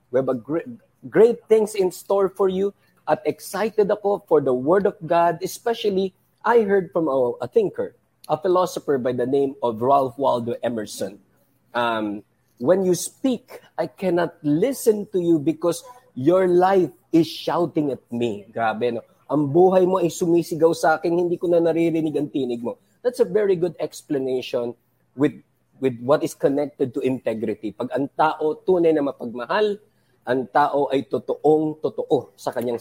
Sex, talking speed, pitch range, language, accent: male, 155 wpm, 130-185 Hz, Filipino, native